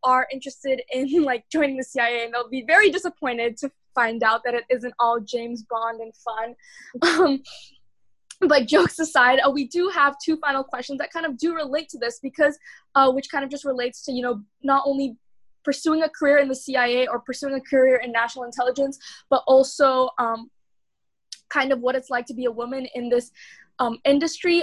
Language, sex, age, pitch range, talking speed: English, female, 10-29, 245-290 Hz, 195 wpm